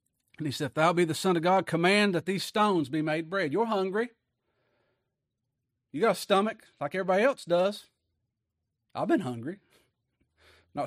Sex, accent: male, American